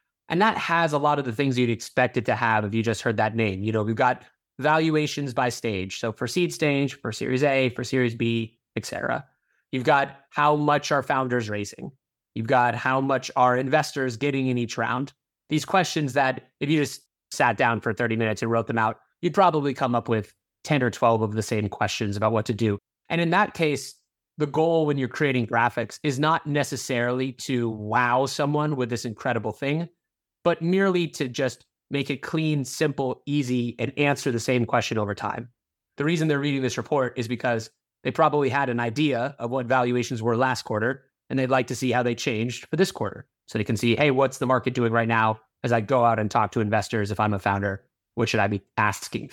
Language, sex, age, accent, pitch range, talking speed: English, male, 30-49, American, 115-145 Hz, 220 wpm